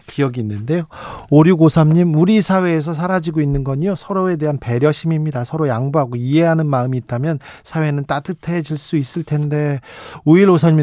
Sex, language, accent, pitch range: male, Korean, native, 145-180 Hz